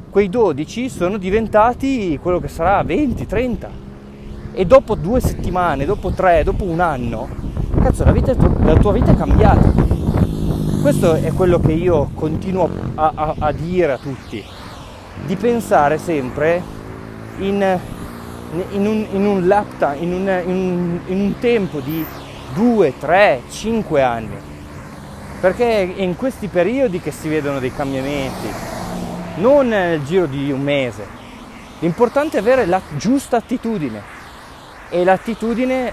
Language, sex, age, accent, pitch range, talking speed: Italian, male, 20-39, native, 135-195 Hz, 135 wpm